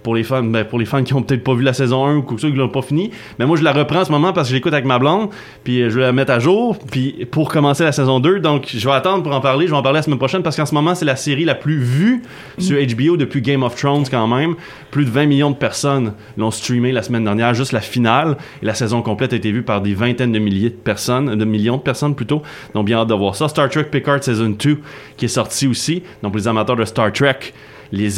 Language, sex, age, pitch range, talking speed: French, male, 20-39, 115-150 Hz, 290 wpm